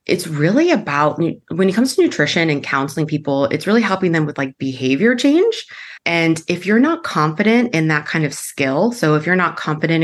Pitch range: 145-175 Hz